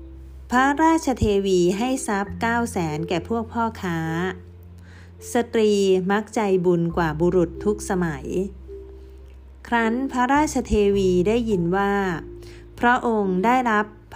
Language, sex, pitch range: Thai, female, 160-225 Hz